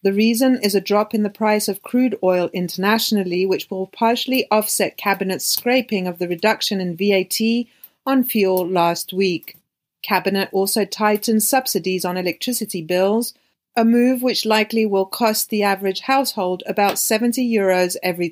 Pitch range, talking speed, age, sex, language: 190-230 Hz, 150 wpm, 40-59, female, English